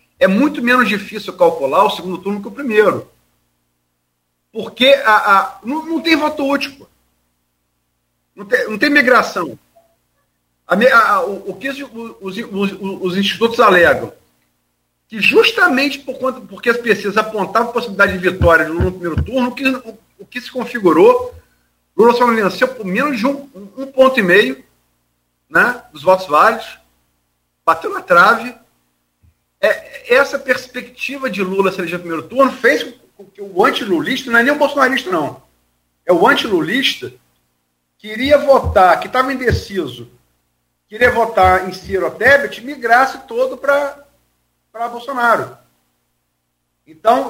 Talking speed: 145 wpm